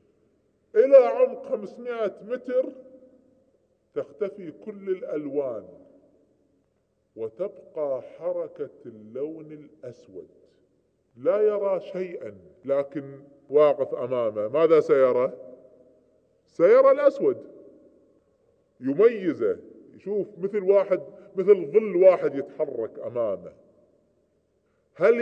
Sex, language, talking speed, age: female, Arabic, 75 wpm, 20-39